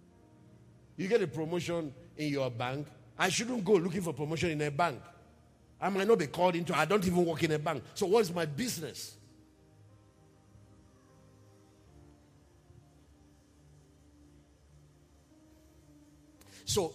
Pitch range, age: 110-175 Hz, 50-69